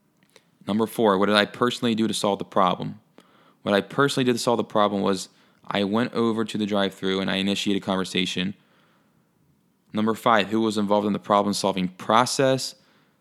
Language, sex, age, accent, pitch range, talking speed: English, male, 20-39, American, 100-120 Hz, 185 wpm